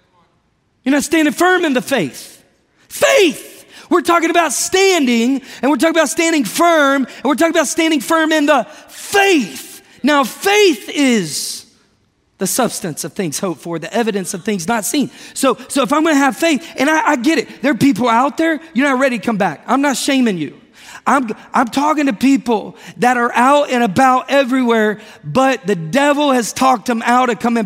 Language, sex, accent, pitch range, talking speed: English, male, American, 225-295 Hz, 195 wpm